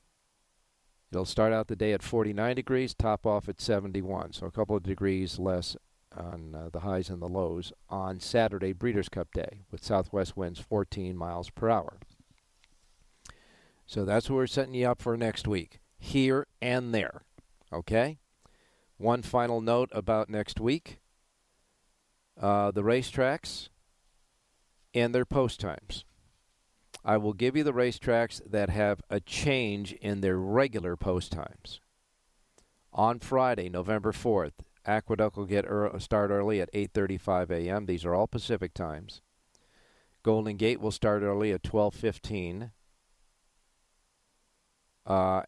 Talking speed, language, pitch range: 140 wpm, English, 95-115 Hz